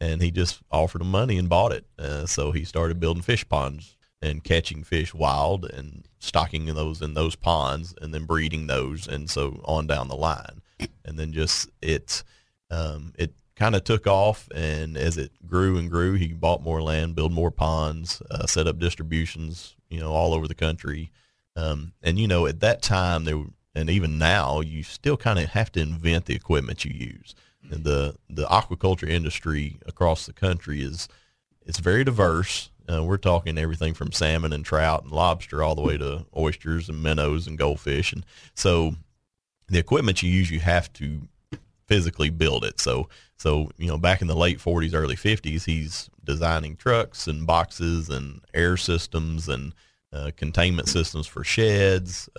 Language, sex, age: English, male, 40-59